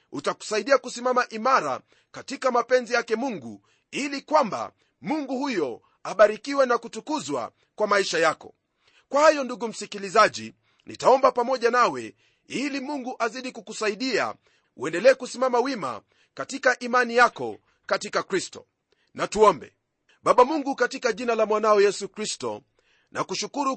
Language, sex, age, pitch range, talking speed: Swahili, male, 40-59, 225-260 Hz, 120 wpm